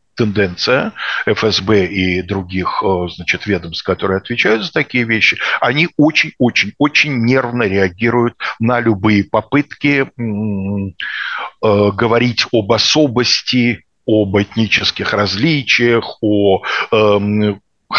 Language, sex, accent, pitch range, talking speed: Russian, male, native, 105-140 Hz, 100 wpm